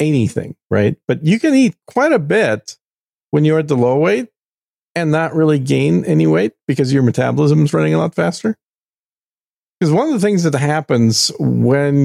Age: 50-69